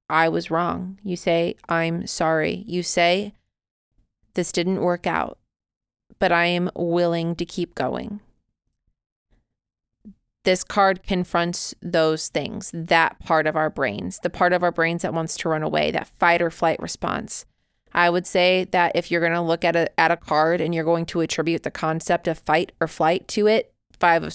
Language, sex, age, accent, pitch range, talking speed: English, female, 30-49, American, 165-195 Hz, 180 wpm